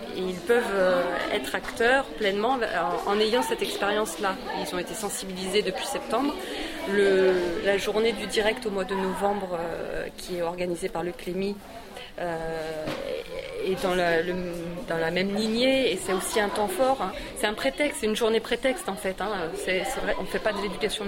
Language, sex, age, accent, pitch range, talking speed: French, female, 30-49, French, 190-240 Hz, 175 wpm